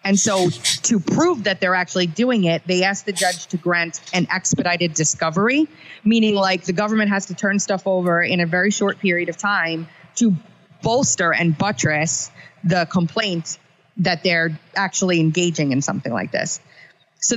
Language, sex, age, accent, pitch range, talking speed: English, female, 30-49, American, 165-195 Hz, 170 wpm